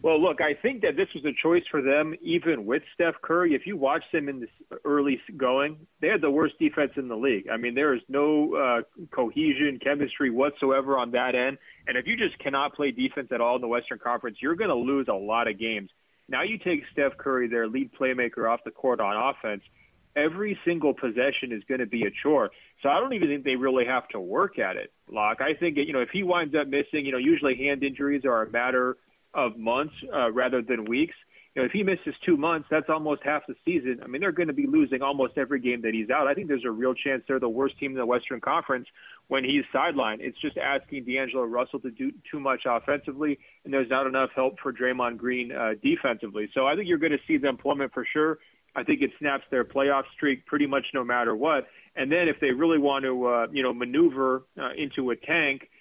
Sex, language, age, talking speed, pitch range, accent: male, English, 30-49, 240 wpm, 125-150 Hz, American